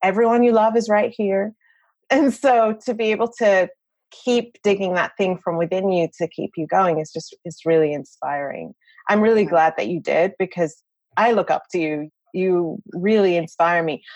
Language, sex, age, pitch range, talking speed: English, female, 30-49, 170-225 Hz, 185 wpm